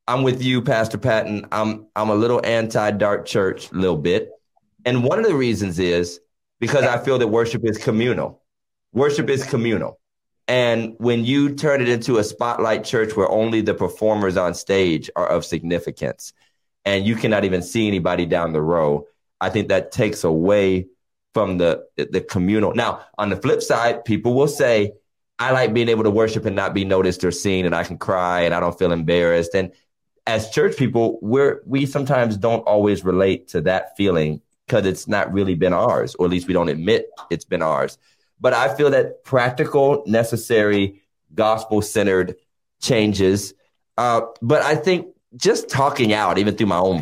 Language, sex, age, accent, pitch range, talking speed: English, male, 30-49, American, 95-125 Hz, 180 wpm